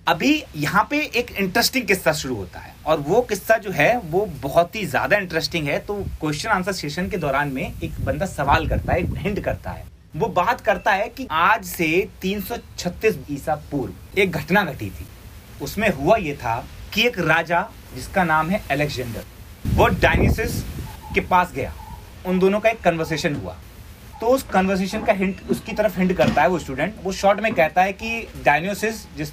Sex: male